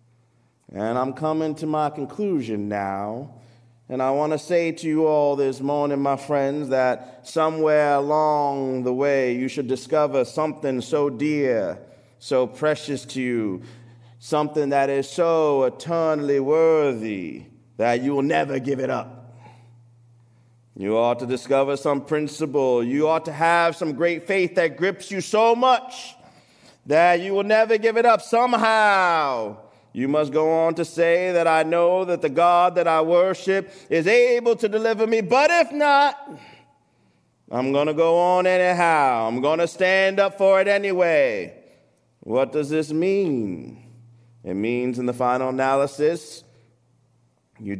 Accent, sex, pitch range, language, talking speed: American, male, 125-170 Hz, English, 150 wpm